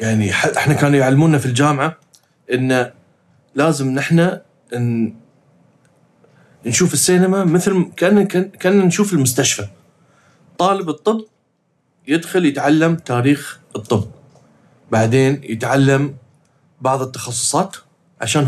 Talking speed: 95 wpm